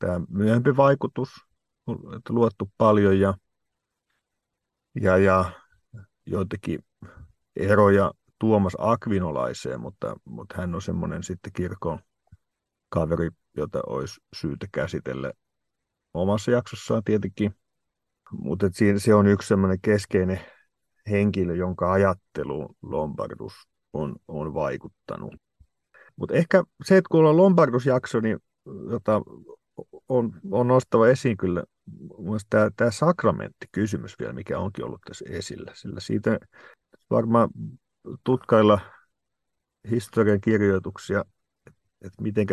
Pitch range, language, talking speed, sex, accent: 95-115 Hz, Finnish, 100 wpm, male, native